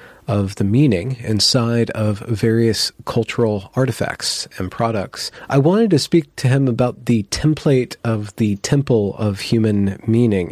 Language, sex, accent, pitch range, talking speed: English, male, American, 105-125 Hz, 145 wpm